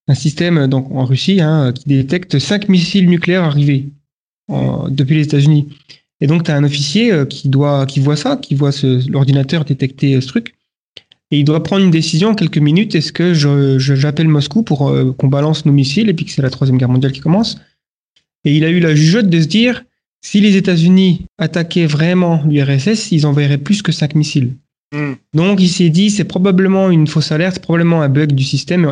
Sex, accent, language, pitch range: male, French, French, 140-170 Hz